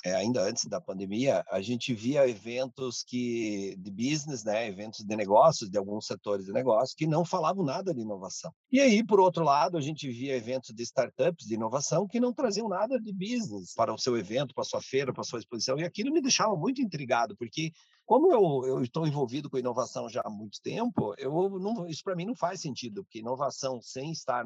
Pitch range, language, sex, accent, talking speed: 120-185 Hz, Portuguese, male, Brazilian, 215 wpm